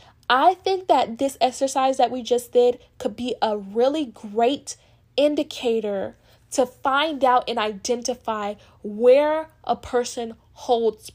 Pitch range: 225-280 Hz